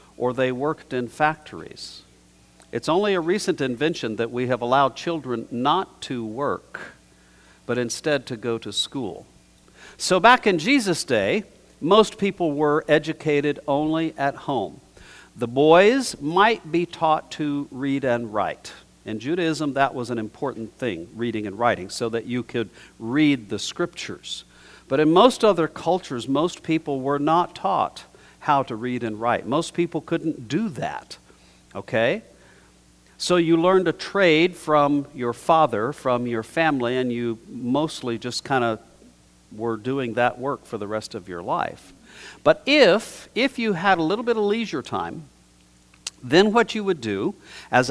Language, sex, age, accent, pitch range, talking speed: English, male, 50-69, American, 115-170 Hz, 160 wpm